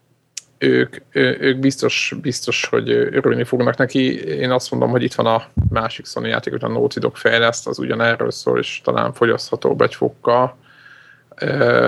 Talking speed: 160 wpm